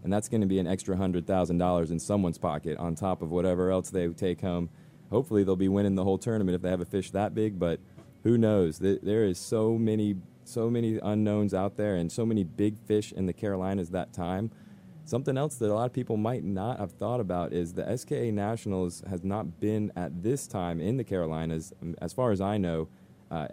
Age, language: 20-39, English